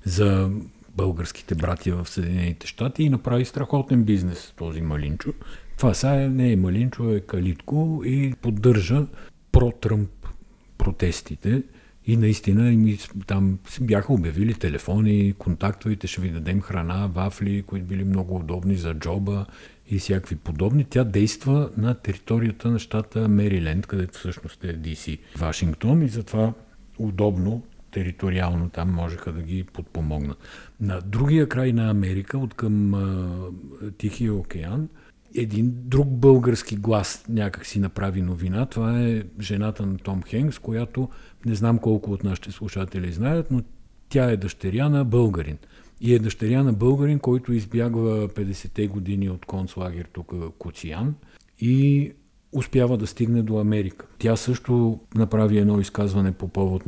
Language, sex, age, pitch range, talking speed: Bulgarian, male, 50-69, 95-120 Hz, 140 wpm